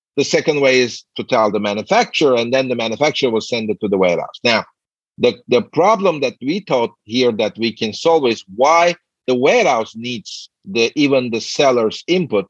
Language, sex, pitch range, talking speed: English, male, 120-155 Hz, 185 wpm